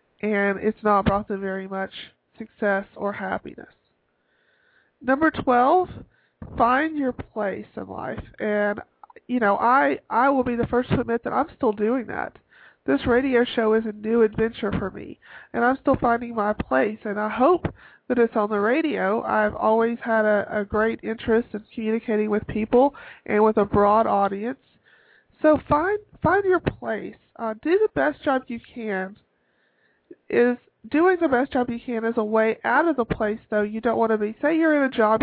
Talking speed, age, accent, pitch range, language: 185 wpm, 40-59, American, 215-265 Hz, English